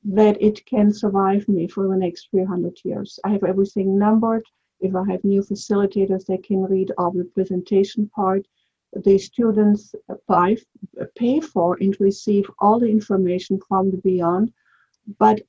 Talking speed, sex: 150 wpm, female